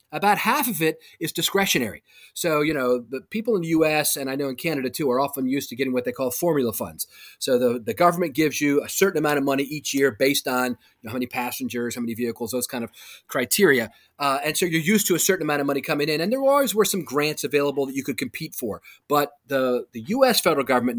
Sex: male